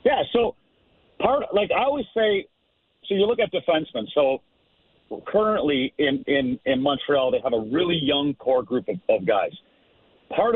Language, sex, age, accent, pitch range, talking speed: English, male, 50-69, American, 145-205 Hz, 165 wpm